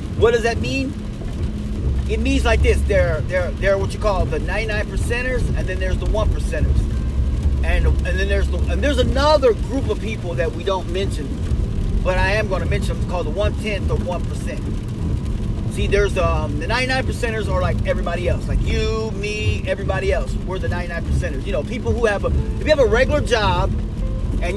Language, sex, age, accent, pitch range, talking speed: English, male, 40-59, American, 70-100 Hz, 195 wpm